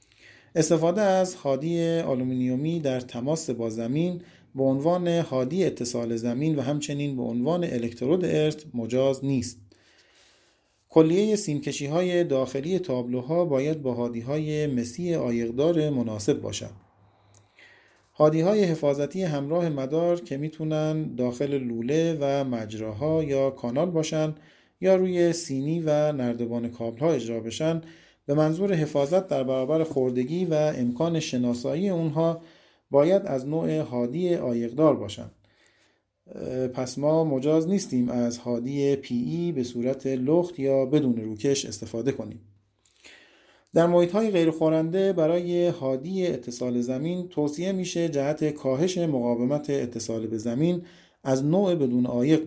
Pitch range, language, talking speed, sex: 125-165 Hz, Persian, 120 wpm, male